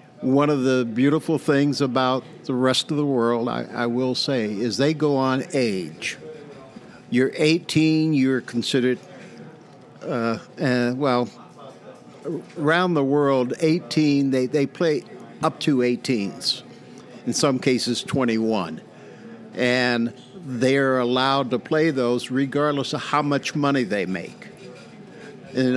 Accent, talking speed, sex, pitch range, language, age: American, 130 wpm, male, 120-145 Hz, English, 60-79